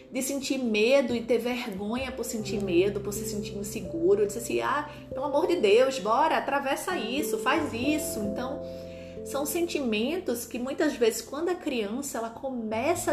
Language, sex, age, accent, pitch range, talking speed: Portuguese, female, 30-49, Brazilian, 210-280 Hz, 170 wpm